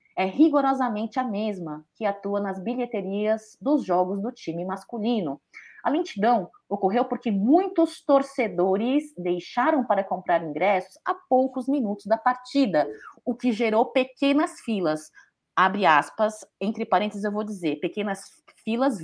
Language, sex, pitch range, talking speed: Portuguese, female, 190-260 Hz, 130 wpm